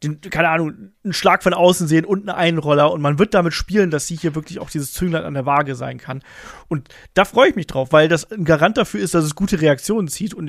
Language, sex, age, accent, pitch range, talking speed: German, male, 40-59, German, 150-195 Hz, 265 wpm